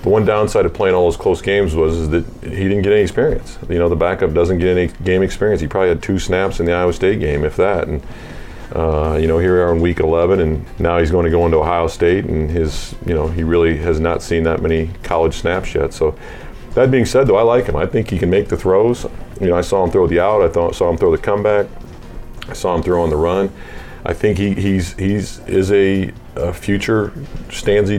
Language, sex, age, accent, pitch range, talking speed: English, male, 40-59, American, 80-95 Hz, 250 wpm